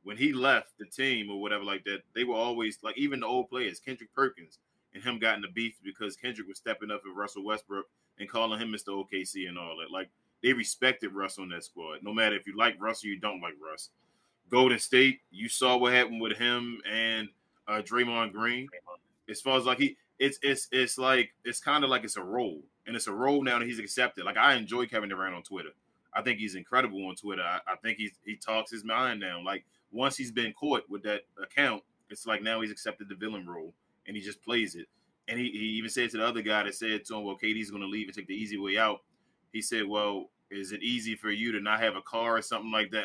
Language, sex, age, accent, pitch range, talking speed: English, male, 20-39, American, 105-125 Hz, 250 wpm